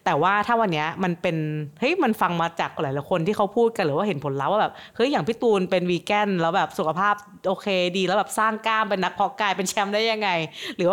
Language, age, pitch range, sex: Thai, 30-49, 160-200 Hz, female